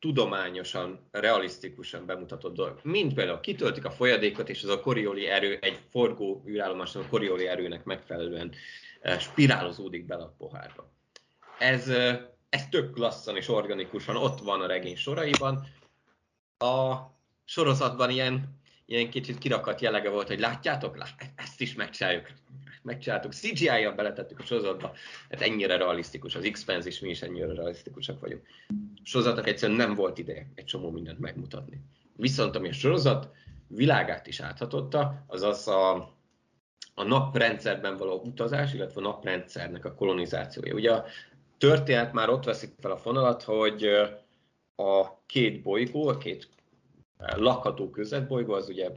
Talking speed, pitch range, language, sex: 135 wpm, 95-135 Hz, Hungarian, male